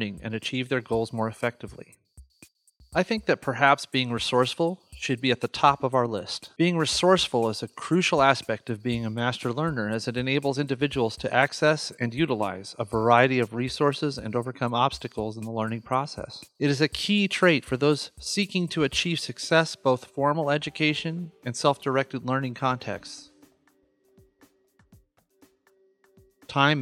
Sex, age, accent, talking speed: male, 30-49, American, 155 wpm